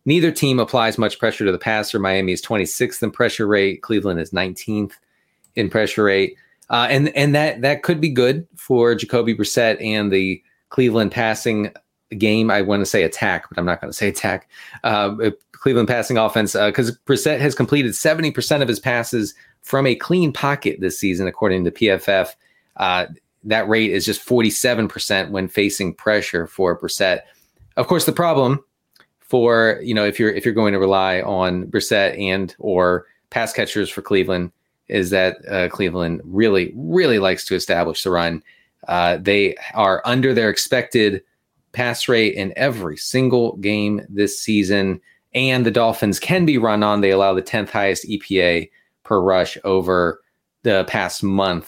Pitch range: 95-125 Hz